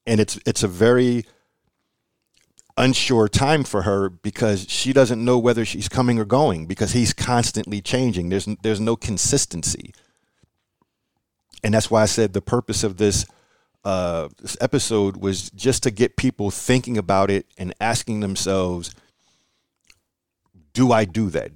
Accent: American